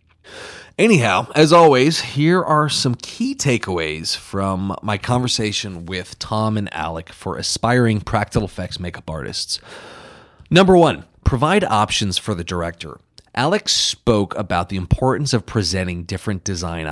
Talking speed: 130 wpm